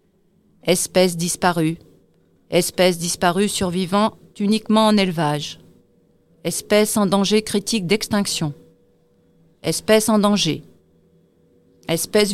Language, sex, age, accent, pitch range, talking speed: French, female, 40-59, French, 170-215 Hz, 85 wpm